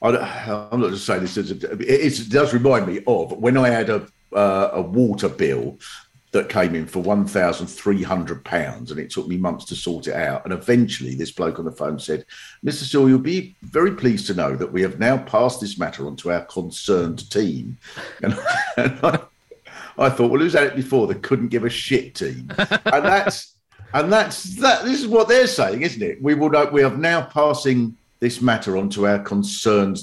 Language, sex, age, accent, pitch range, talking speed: English, male, 50-69, British, 105-170 Hz, 200 wpm